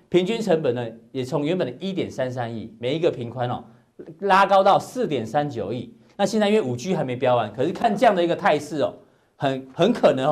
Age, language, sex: 40-59, Chinese, male